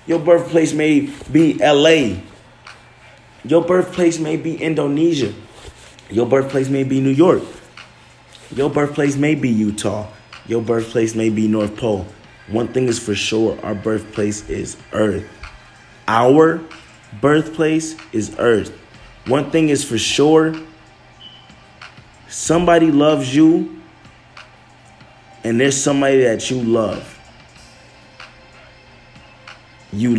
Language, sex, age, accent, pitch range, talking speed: English, male, 20-39, American, 105-145 Hz, 110 wpm